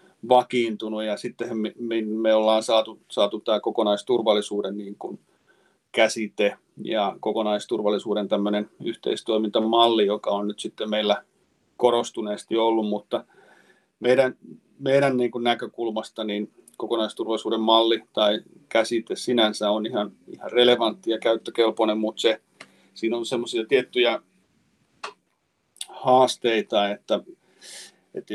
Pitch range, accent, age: 105-115 Hz, native, 40-59